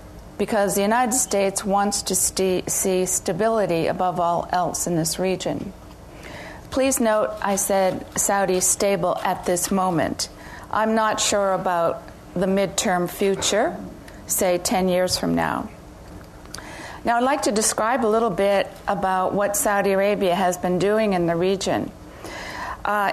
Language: English